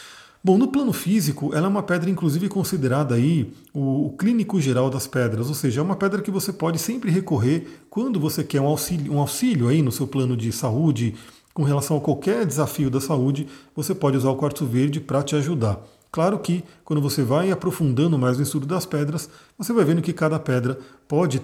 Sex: male